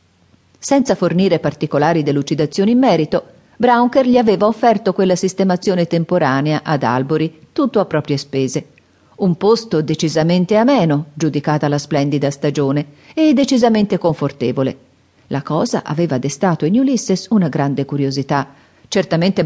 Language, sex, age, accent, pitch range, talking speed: Italian, female, 40-59, native, 145-195 Hz, 125 wpm